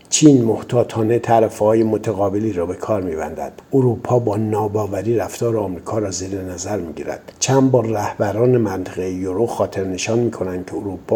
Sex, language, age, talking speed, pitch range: male, Persian, 60-79, 140 wpm, 95-115 Hz